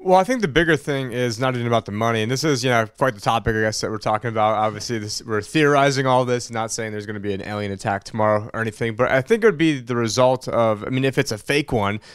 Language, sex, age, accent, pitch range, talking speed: English, male, 20-39, American, 110-130 Hz, 300 wpm